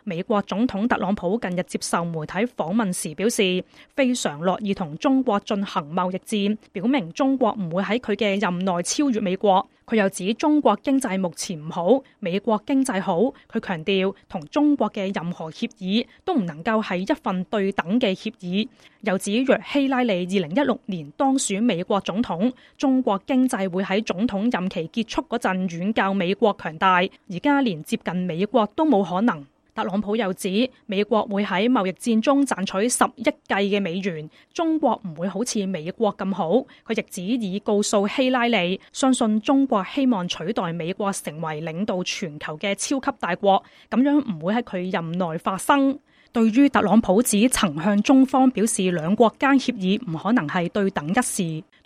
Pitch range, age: 190-245 Hz, 20-39